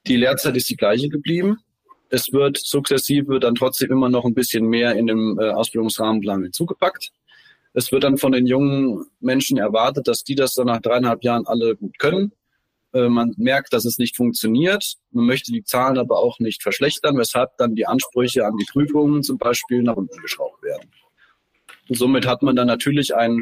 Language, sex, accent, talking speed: German, male, German, 185 wpm